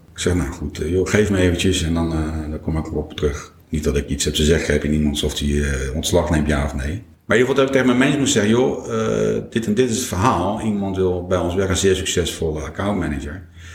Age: 50-69